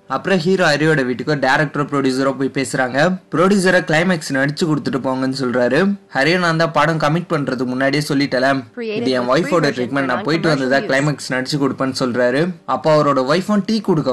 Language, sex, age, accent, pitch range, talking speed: Tamil, male, 20-39, native, 130-165 Hz, 155 wpm